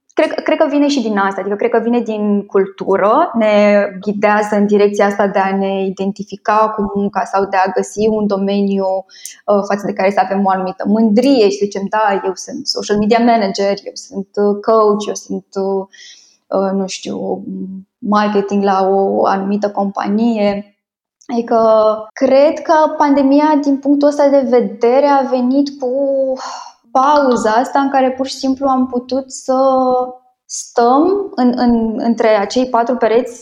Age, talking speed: 10-29, 155 wpm